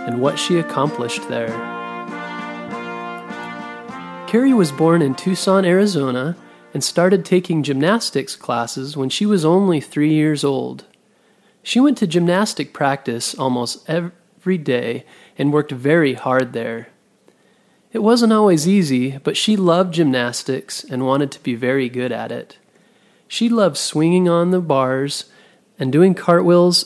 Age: 30-49